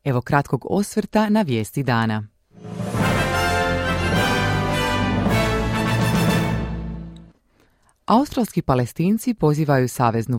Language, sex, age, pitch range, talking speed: Croatian, female, 30-49, 115-155 Hz, 60 wpm